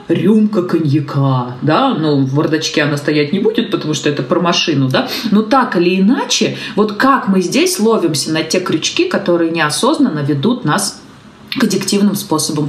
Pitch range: 170-245 Hz